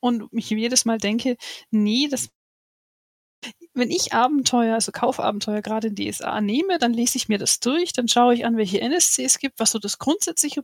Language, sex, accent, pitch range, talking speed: German, female, German, 220-275 Hz, 190 wpm